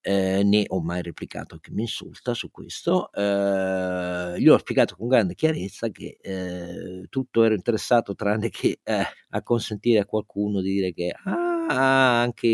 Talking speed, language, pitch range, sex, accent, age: 165 wpm, Italian, 95-110 Hz, male, native, 50-69